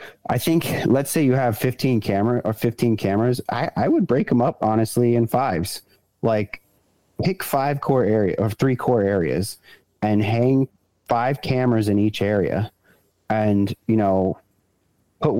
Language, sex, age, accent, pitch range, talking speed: English, male, 30-49, American, 95-120 Hz, 155 wpm